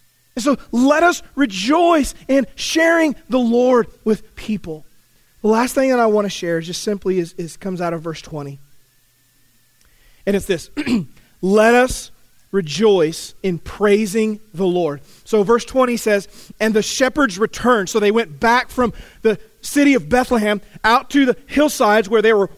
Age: 30-49